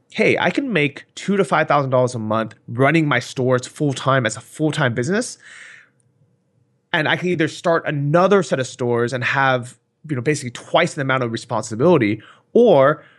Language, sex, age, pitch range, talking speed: English, male, 30-49, 125-165 Hz, 185 wpm